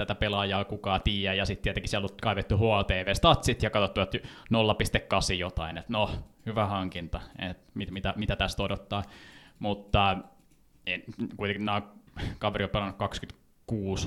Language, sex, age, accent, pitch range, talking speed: Finnish, male, 20-39, native, 95-110 Hz, 135 wpm